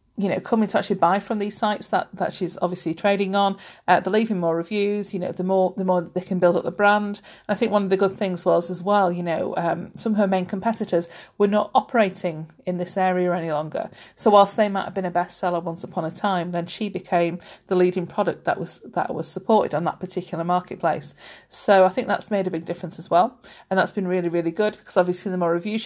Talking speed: 250 wpm